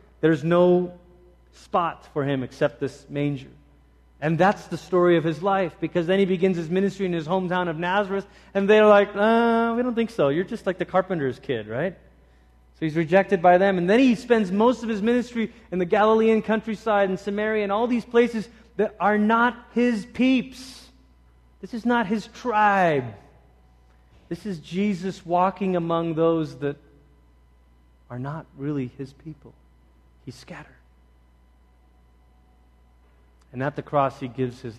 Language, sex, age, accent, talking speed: English, male, 30-49, American, 160 wpm